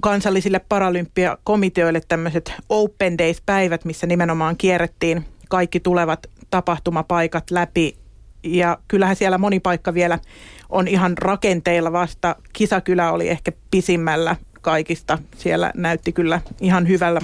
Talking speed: 110 wpm